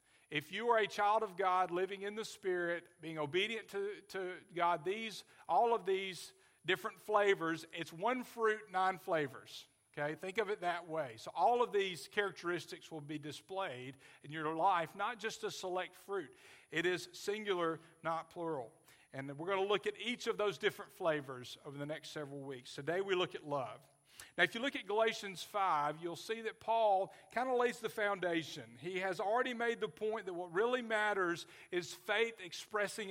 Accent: American